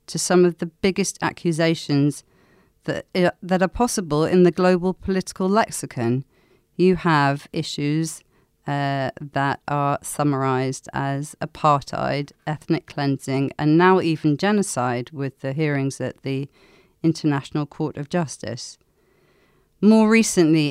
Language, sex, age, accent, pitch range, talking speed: English, female, 40-59, British, 145-175 Hz, 120 wpm